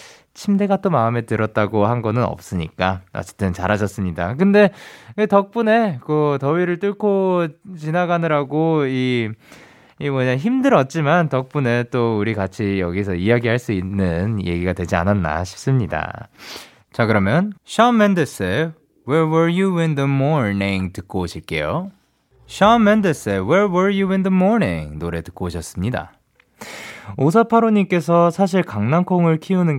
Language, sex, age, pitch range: Korean, male, 20-39, 105-170 Hz